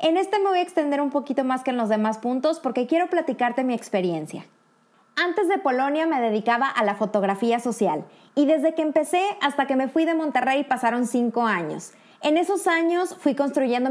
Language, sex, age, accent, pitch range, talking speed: Spanish, female, 20-39, Mexican, 235-310 Hz, 200 wpm